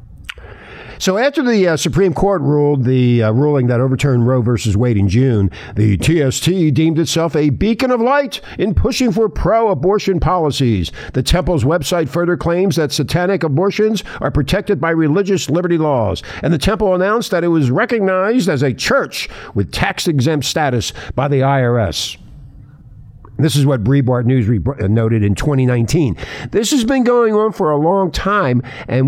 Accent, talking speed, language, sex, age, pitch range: American, 165 wpm, English, male, 60-79, 120-180 Hz